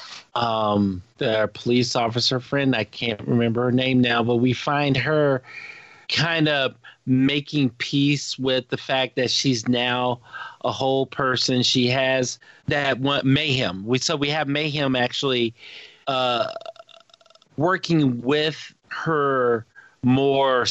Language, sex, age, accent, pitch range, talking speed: English, male, 40-59, American, 120-145 Hz, 125 wpm